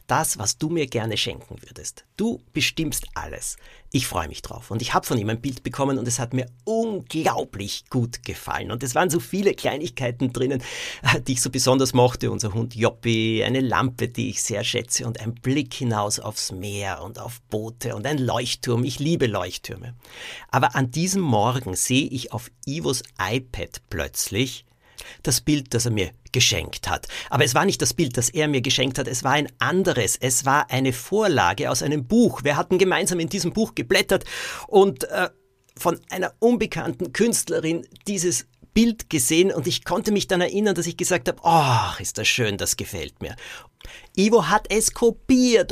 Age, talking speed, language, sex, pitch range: 50-69, 185 wpm, German, male, 120-185 Hz